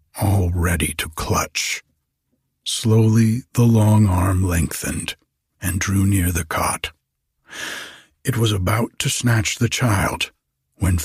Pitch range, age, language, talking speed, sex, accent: 85-115 Hz, 60-79, English, 120 wpm, male, American